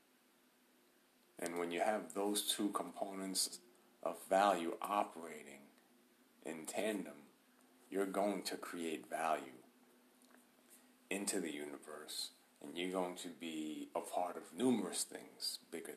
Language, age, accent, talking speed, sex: English, 40-59, American, 115 wpm, male